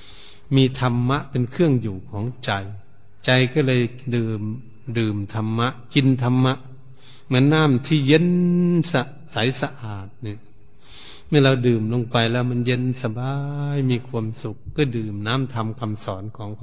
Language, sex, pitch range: Thai, male, 105-120 Hz